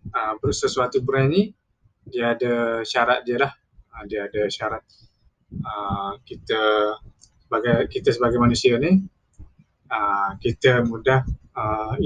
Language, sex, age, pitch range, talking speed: Malay, male, 20-39, 105-130 Hz, 125 wpm